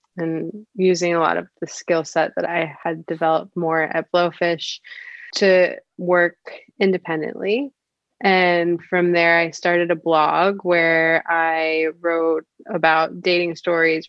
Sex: female